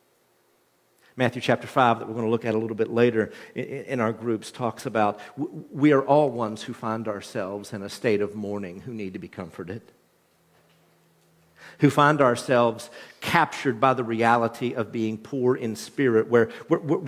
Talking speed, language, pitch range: 170 wpm, English, 105-135 Hz